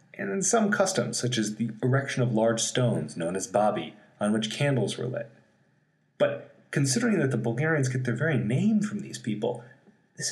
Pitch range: 115-160 Hz